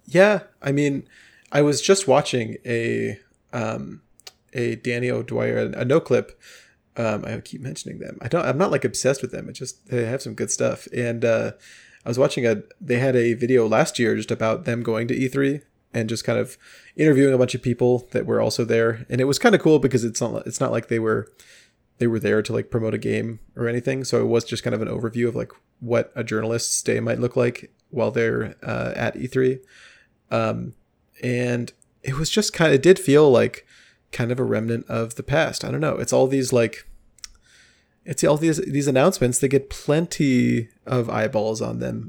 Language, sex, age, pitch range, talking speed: English, male, 20-39, 115-140 Hz, 210 wpm